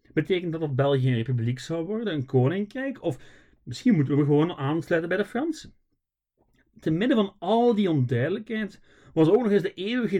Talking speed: 180 wpm